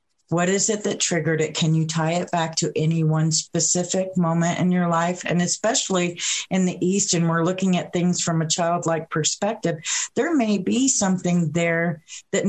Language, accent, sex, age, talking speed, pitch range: English, American, female, 40-59, 185 wpm, 155-190 Hz